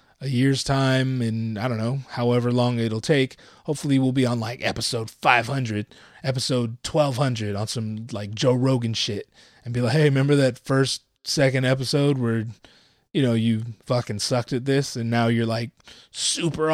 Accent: American